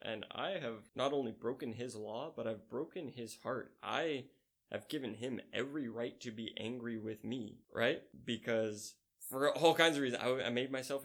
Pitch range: 110-130 Hz